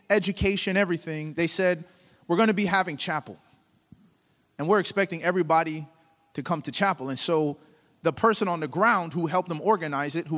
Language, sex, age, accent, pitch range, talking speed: English, male, 30-49, American, 165-210 Hz, 180 wpm